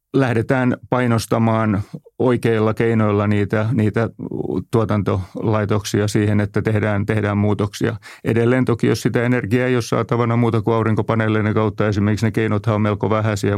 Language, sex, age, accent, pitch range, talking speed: Finnish, male, 30-49, native, 105-115 Hz, 135 wpm